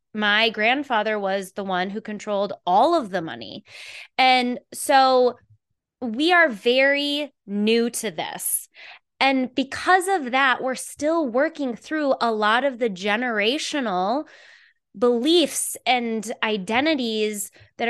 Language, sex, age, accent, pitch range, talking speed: English, female, 20-39, American, 205-270 Hz, 120 wpm